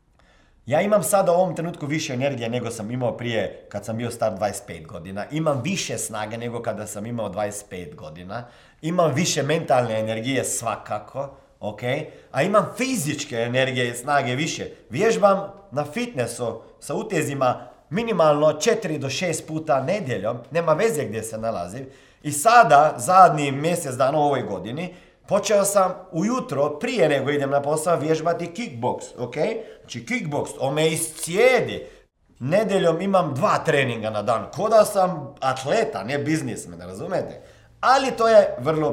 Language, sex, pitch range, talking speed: Croatian, male, 125-180 Hz, 150 wpm